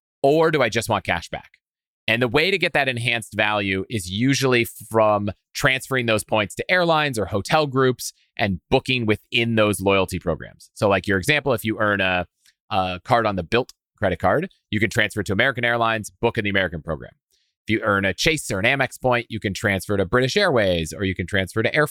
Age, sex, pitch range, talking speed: 30-49, male, 100-130 Hz, 215 wpm